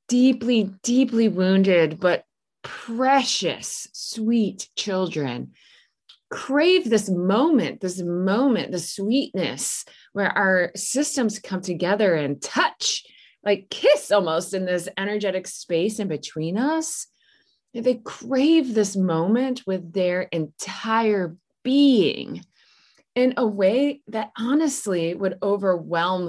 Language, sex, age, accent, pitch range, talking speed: English, female, 20-39, American, 175-245 Hz, 105 wpm